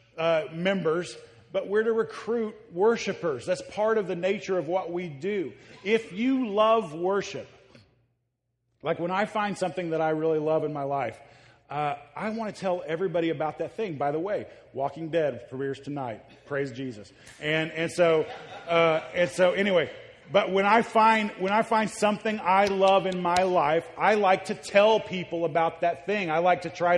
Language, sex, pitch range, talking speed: English, male, 155-195 Hz, 185 wpm